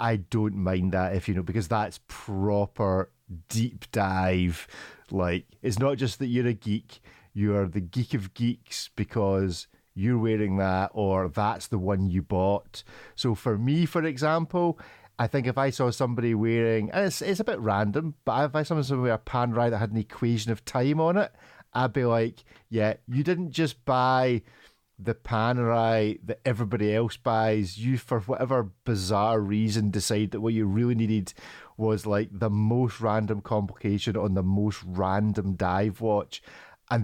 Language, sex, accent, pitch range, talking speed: English, male, British, 105-130 Hz, 175 wpm